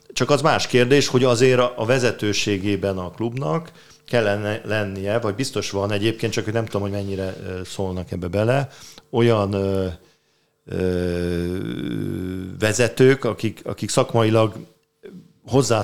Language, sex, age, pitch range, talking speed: Hungarian, male, 40-59, 100-125 Hz, 115 wpm